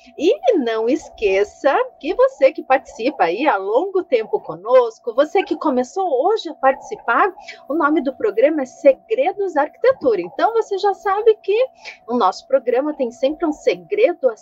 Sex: female